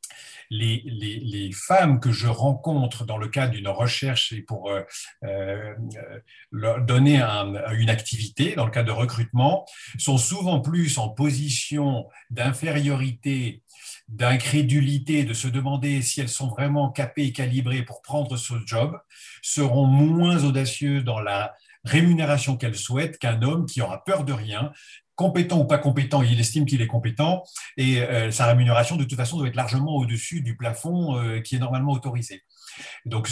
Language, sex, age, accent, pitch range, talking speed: French, male, 50-69, French, 120-150 Hz, 160 wpm